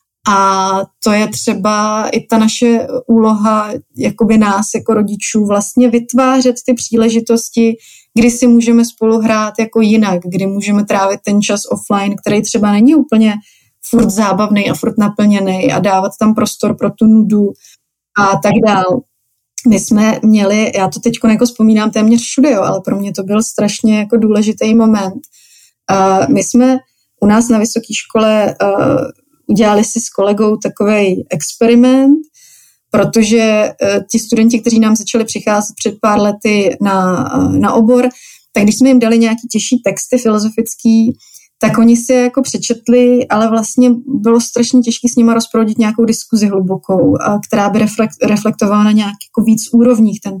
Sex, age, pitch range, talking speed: female, 20-39, 210-235 Hz, 155 wpm